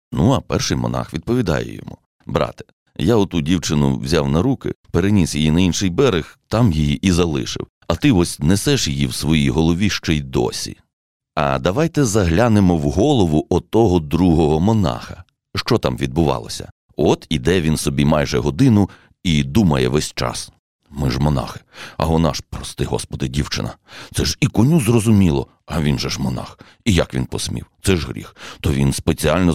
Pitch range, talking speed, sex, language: 75-100 Hz, 170 wpm, male, Ukrainian